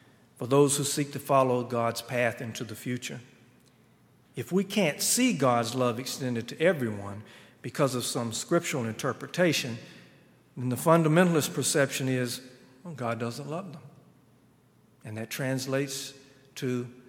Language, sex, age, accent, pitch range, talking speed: English, male, 50-69, American, 125-165 Hz, 135 wpm